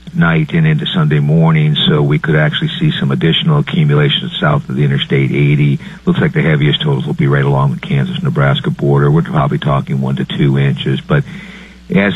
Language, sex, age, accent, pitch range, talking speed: English, male, 50-69, American, 140-175 Hz, 190 wpm